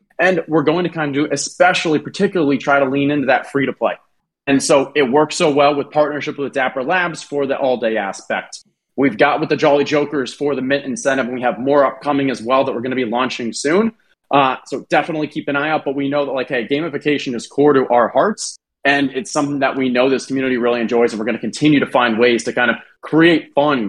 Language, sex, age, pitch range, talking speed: English, male, 30-49, 130-155 Hz, 240 wpm